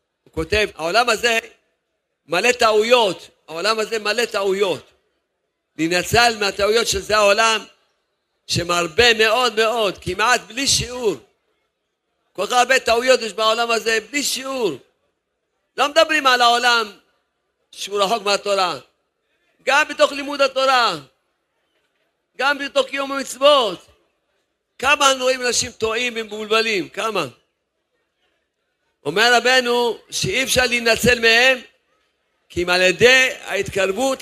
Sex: male